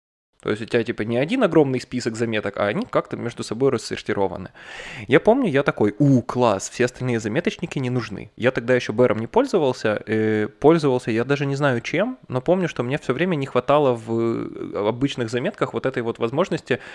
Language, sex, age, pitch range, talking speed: Russian, male, 20-39, 115-145 Hz, 190 wpm